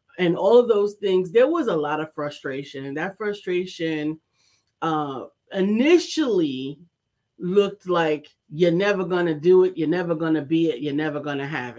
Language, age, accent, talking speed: English, 40-59, American, 180 wpm